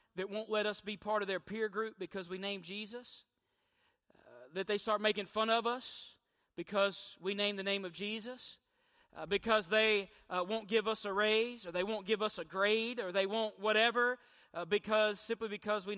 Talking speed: 205 wpm